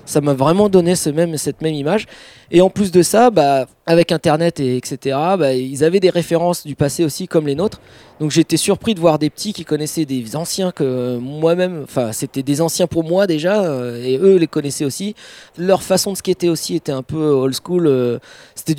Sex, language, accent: male, French, French